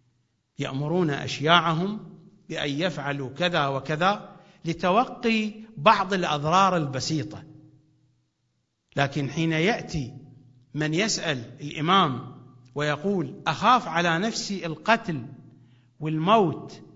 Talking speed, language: 80 wpm, English